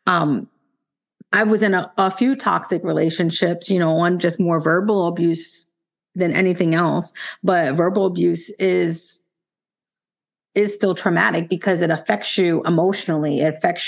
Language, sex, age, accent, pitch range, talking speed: English, female, 30-49, American, 165-190 Hz, 145 wpm